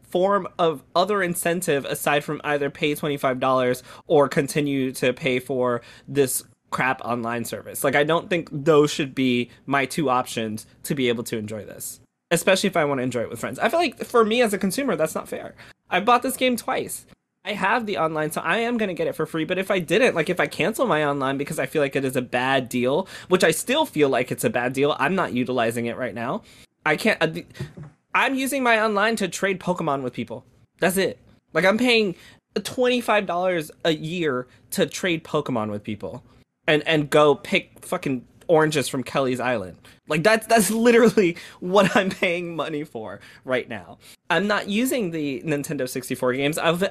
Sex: male